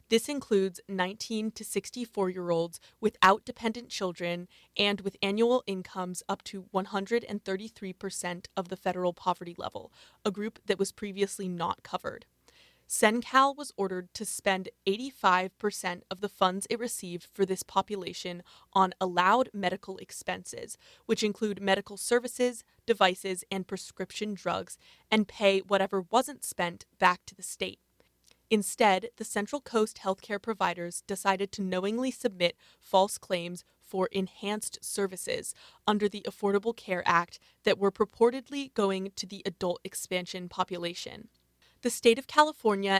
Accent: American